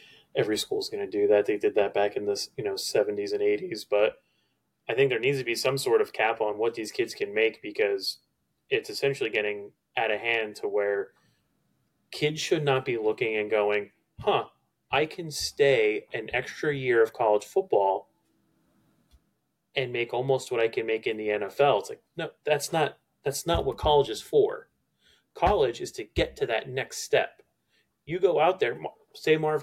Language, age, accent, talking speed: English, 30-49, American, 195 wpm